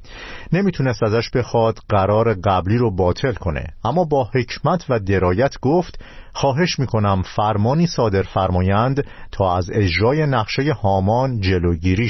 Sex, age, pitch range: male, 50-69, 95-130 Hz